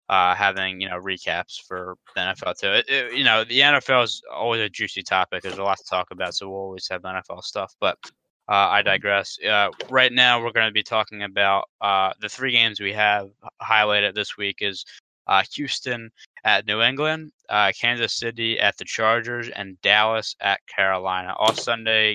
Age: 20-39